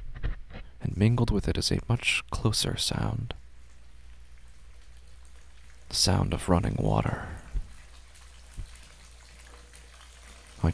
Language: English